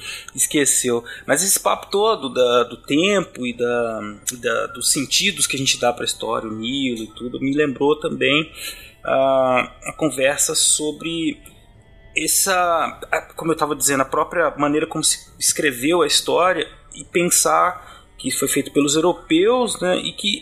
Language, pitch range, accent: Portuguese, 130-180 Hz, Brazilian